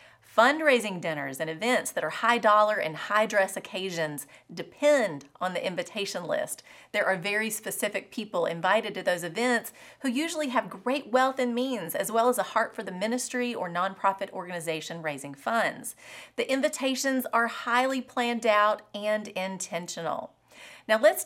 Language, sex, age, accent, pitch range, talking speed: English, female, 30-49, American, 180-250 Hz, 150 wpm